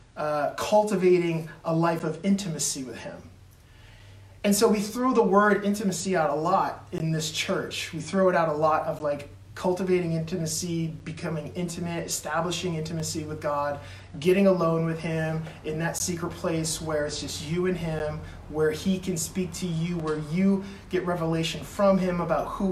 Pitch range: 155-195 Hz